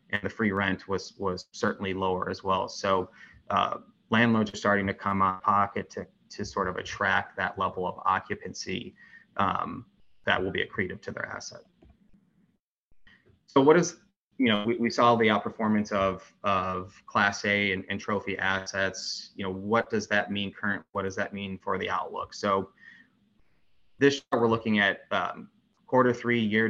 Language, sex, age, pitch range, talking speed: English, male, 20-39, 95-110 Hz, 175 wpm